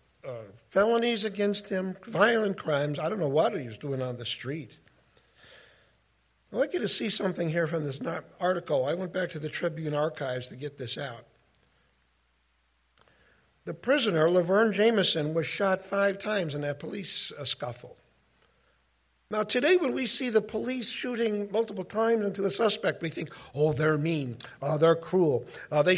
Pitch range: 140-215 Hz